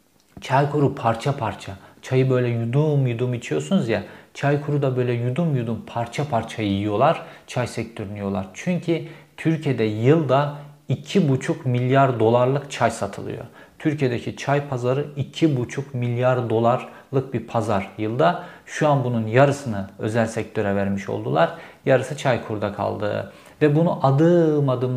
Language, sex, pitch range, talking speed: Turkish, male, 115-145 Hz, 130 wpm